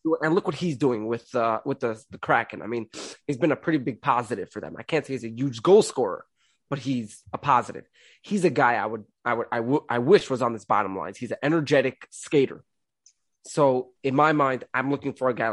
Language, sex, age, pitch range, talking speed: English, male, 20-39, 115-145 Hz, 240 wpm